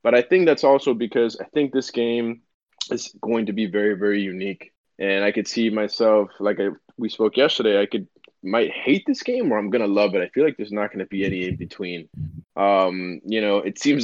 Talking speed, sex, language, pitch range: 225 wpm, male, English, 100-125 Hz